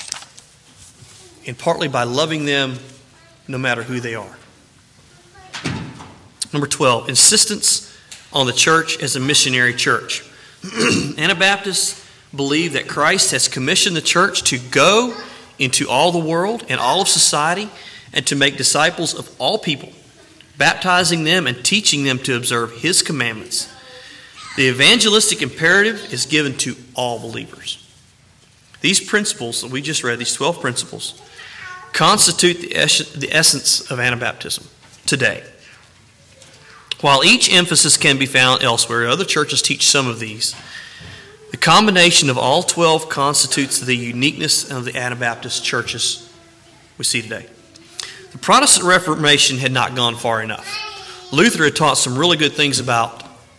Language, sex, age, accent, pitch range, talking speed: English, male, 40-59, American, 125-170 Hz, 135 wpm